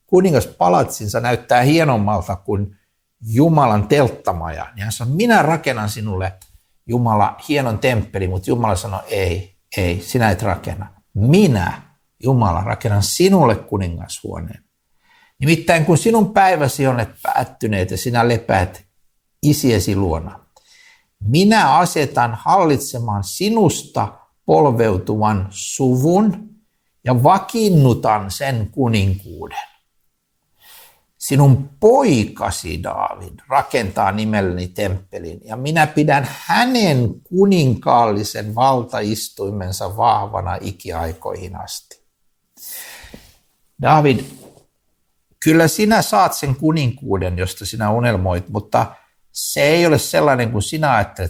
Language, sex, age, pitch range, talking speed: Finnish, male, 60-79, 100-145 Hz, 95 wpm